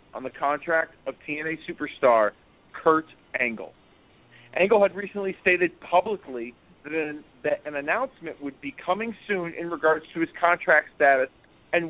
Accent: American